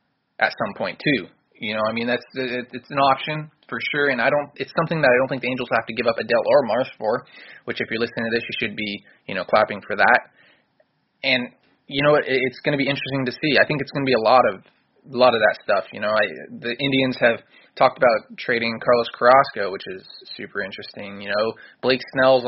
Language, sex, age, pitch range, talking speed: English, male, 20-39, 120-140 Hz, 240 wpm